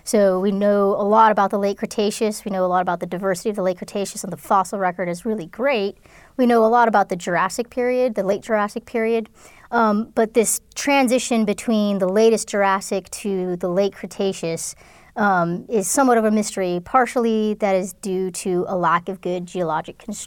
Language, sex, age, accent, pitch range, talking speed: English, female, 30-49, American, 190-225 Hz, 200 wpm